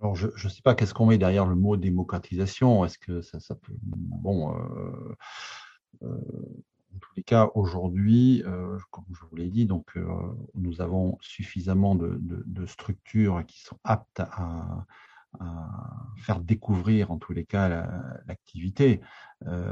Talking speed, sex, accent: 145 wpm, male, French